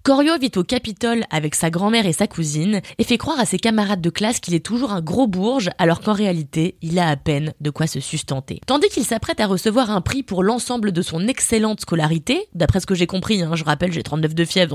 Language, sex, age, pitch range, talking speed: French, female, 20-39, 170-235 Hz, 245 wpm